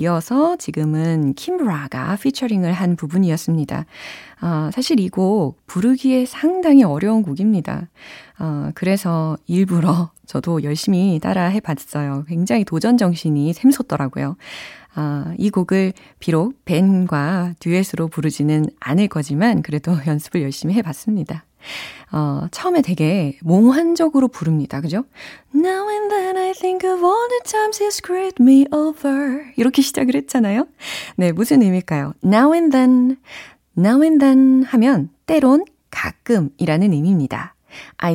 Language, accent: Korean, native